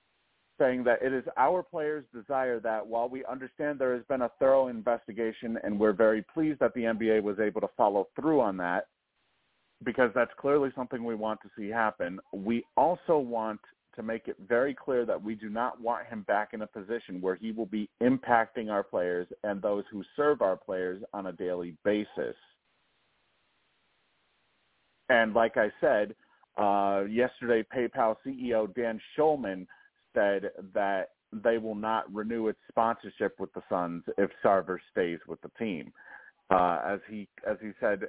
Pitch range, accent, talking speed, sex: 105-125 Hz, American, 170 wpm, male